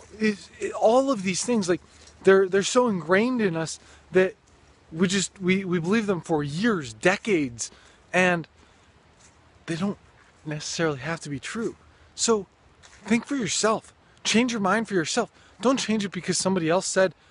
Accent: American